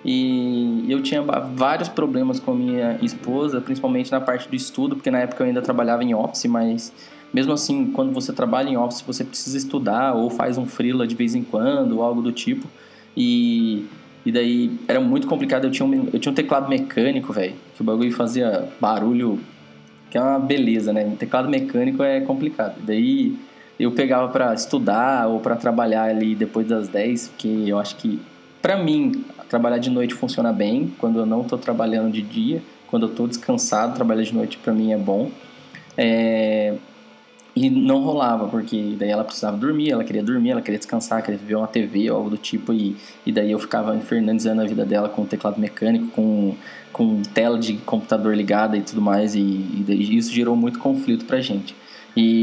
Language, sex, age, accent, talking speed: Portuguese, male, 20-39, Brazilian, 200 wpm